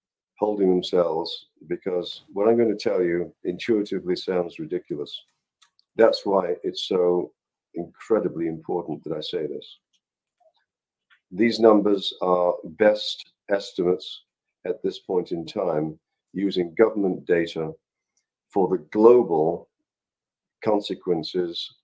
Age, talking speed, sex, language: 50-69, 105 wpm, male, English